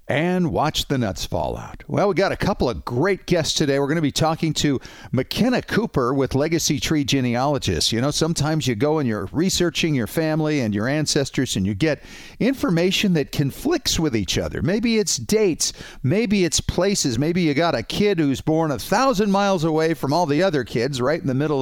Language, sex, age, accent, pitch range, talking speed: English, male, 50-69, American, 125-170 Hz, 210 wpm